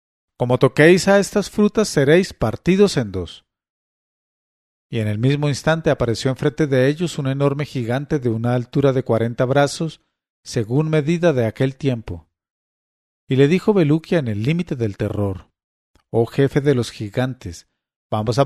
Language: English